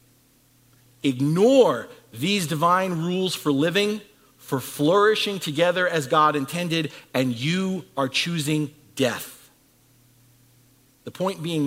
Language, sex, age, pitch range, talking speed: English, male, 50-69, 140-210 Hz, 105 wpm